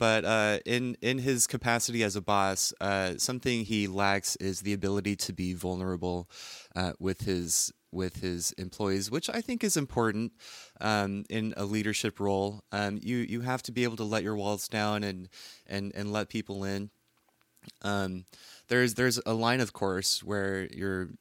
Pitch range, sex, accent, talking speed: 95-110 Hz, male, American, 175 wpm